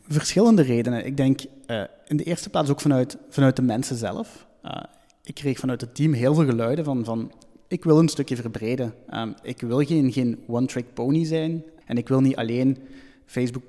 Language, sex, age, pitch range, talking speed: Dutch, male, 20-39, 115-135 Hz, 195 wpm